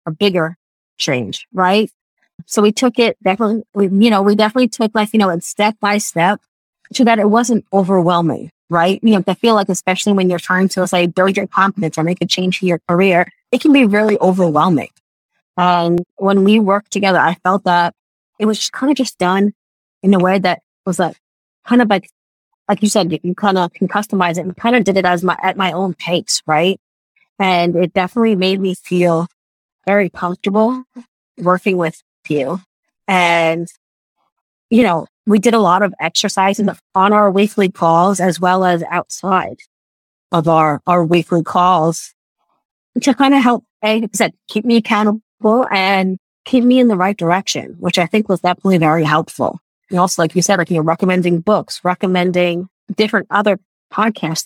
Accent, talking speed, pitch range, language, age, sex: American, 185 wpm, 175-210 Hz, English, 20-39, female